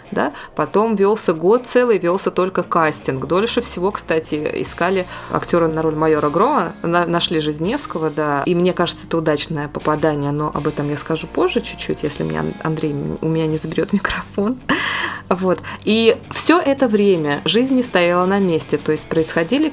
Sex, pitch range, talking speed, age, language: female, 155-195 Hz, 165 wpm, 20-39, Russian